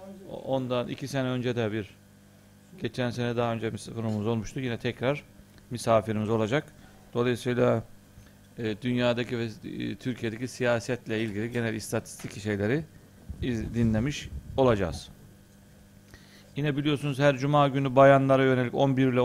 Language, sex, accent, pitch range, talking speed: Turkish, male, native, 105-125 Hz, 110 wpm